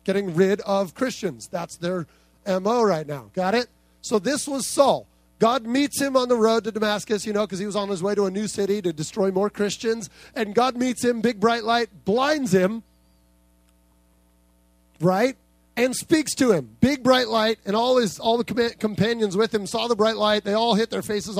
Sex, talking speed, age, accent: male, 210 wpm, 30-49, American